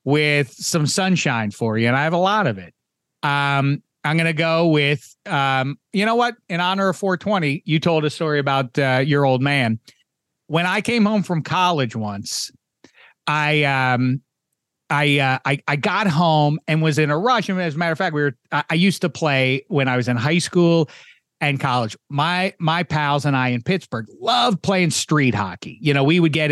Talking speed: 205 wpm